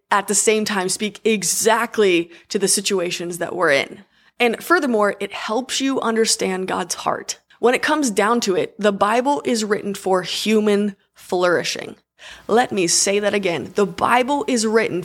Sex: female